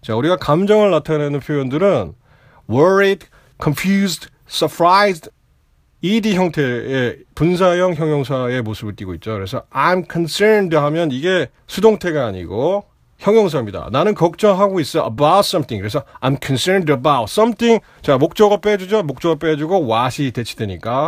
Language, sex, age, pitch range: Korean, male, 40-59, 125-195 Hz